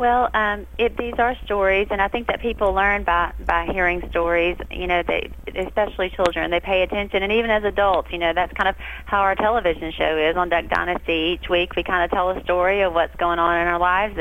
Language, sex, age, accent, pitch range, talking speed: English, female, 30-49, American, 170-195 Hz, 230 wpm